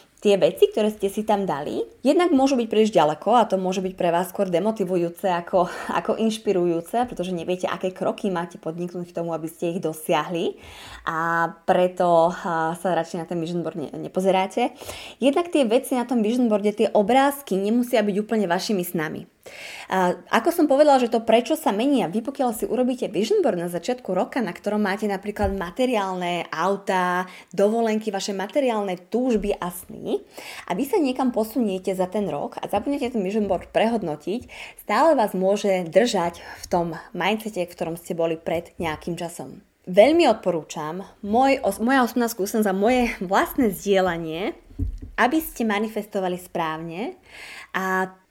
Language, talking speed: Slovak, 165 wpm